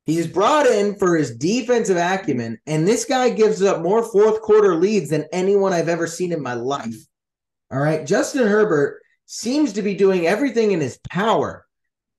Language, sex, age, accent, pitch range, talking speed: English, male, 30-49, American, 160-230 Hz, 170 wpm